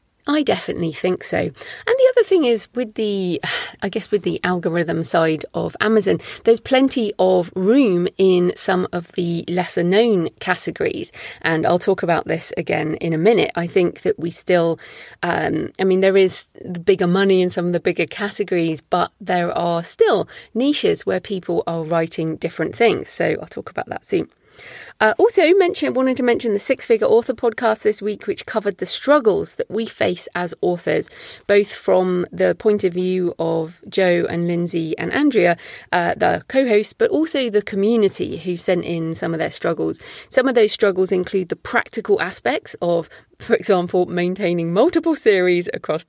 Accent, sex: British, female